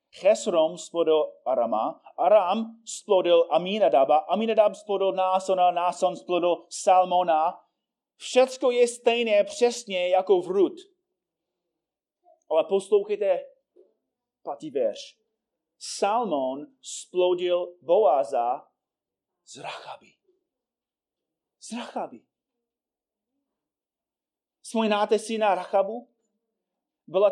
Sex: male